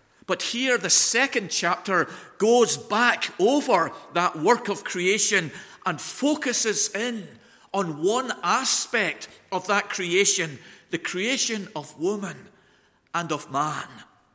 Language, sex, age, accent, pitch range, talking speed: English, male, 50-69, British, 150-220 Hz, 115 wpm